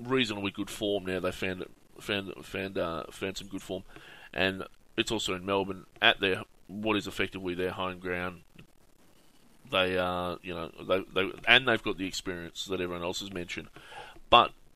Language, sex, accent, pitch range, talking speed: English, male, Australian, 90-105 Hz, 185 wpm